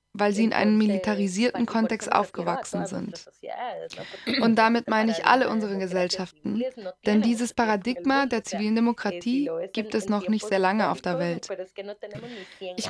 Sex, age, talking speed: female, 20-39, 145 wpm